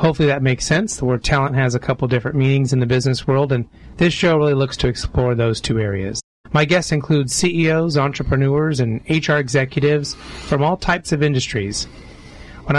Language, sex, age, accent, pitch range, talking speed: English, male, 30-49, American, 125-150 Hz, 190 wpm